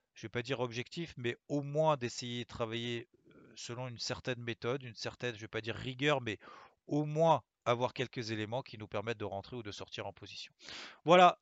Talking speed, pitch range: 215 wpm, 110-130 Hz